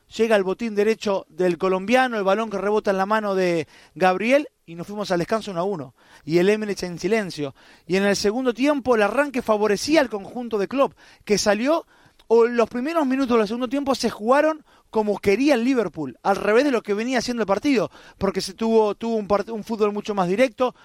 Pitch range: 185-245 Hz